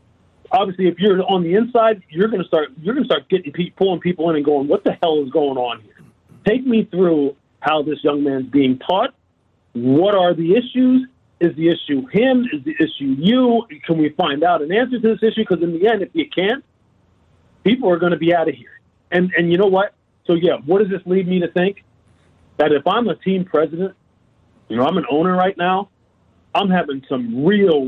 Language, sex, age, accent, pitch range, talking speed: English, male, 40-59, American, 155-215 Hz, 215 wpm